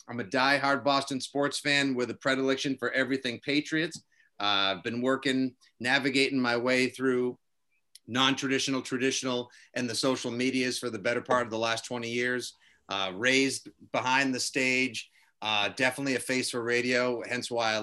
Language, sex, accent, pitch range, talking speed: English, male, American, 125-175 Hz, 165 wpm